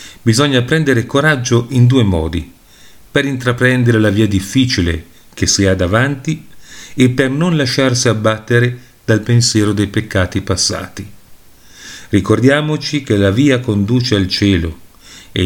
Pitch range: 100-130 Hz